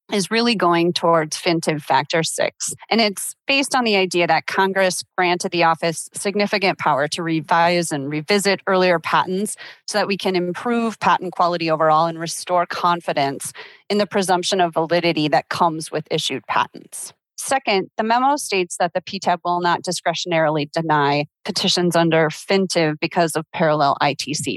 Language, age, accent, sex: English, 30-49, American, female